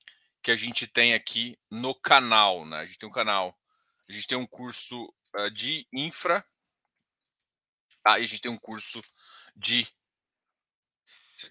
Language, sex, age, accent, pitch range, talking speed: Portuguese, male, 20-39, Brazilian, 110-130 Hz, 160 wpm